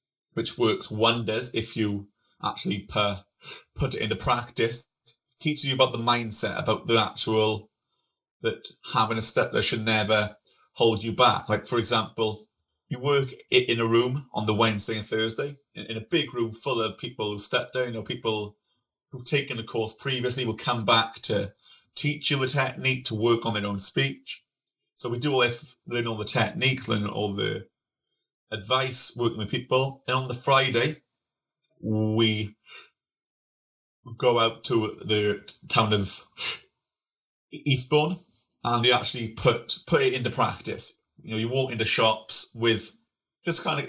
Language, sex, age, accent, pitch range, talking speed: English, male, 30-49, British, 110-125 Hz, 170 wpm